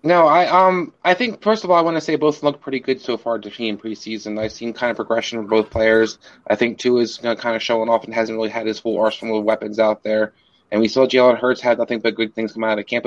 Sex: male